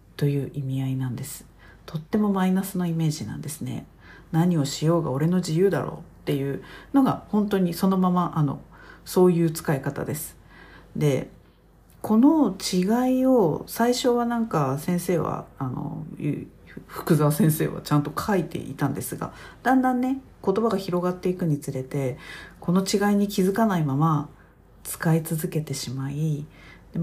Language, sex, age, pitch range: Japanese, female, 50-69, 145-190 Hz